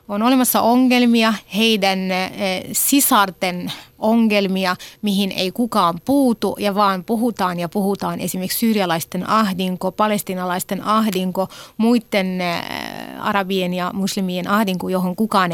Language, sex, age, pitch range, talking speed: Finnish, female, 30-49, 190-240 Hz, 105 wpm